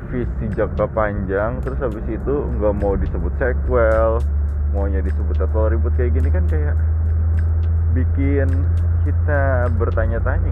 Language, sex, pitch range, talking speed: Indonesian, male, 75-85 Hz, 120 wpm